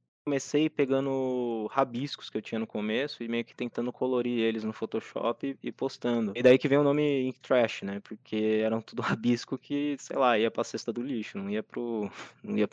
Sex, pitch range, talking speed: male, 105-140 Hz, 200 wpm